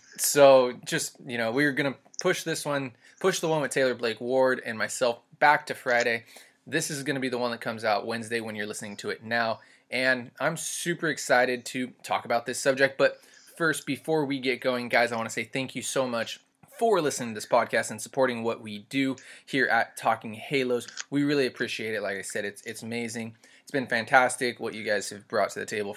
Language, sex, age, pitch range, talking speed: English, male, 20-39, 115-140 Hz, 225 wpm